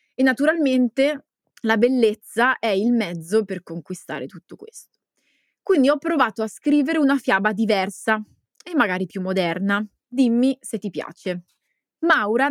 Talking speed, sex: 135 wpm, female